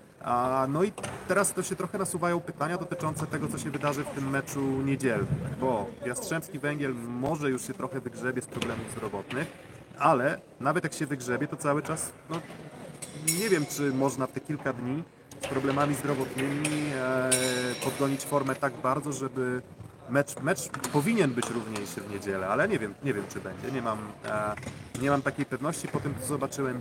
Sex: male